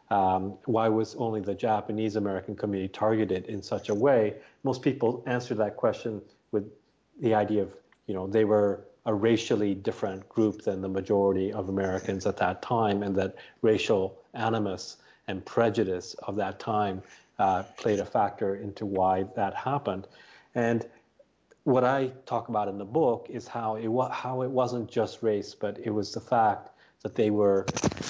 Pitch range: 100-115 Hz